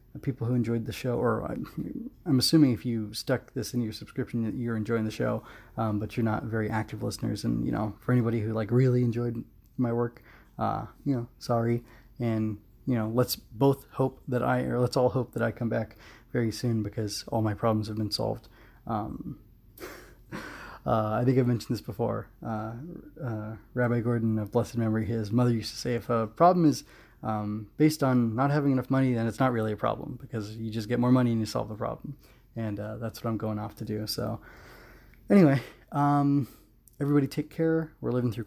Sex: male